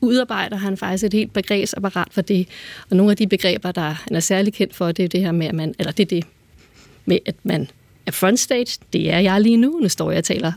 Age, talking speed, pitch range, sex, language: 30-49, 250 wpm, 185-220 Hz, female, Danish